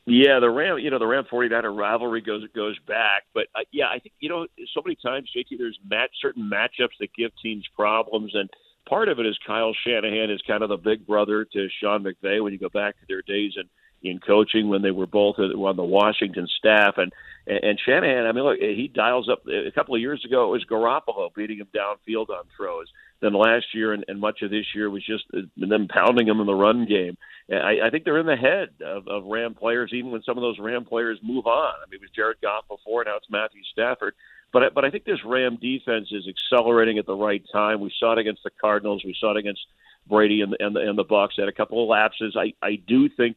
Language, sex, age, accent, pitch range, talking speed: English, male, 50-69, American, 105-125 Hz, 235 wpm